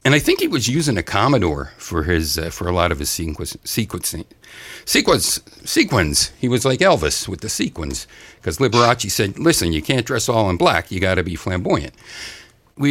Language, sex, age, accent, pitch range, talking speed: English, male, 60-79, American, 80-115 Hz, 200 wpm